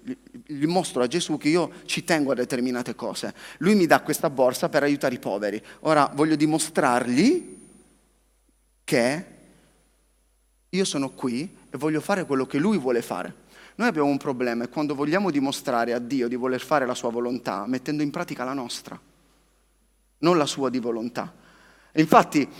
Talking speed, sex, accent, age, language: 160 wpm, male, native, 30-49, Italian